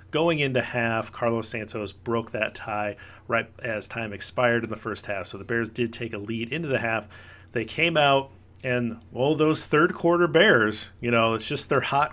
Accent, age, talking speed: American, 40-59, 205 wpm